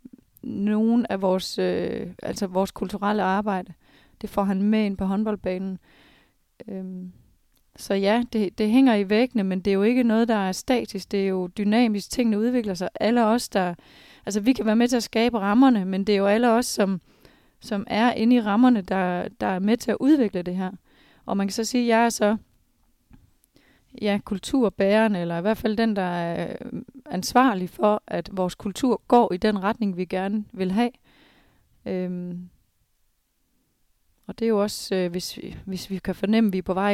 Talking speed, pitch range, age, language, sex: 195 wpm, 190-225 Hz, 30-49, Danish, female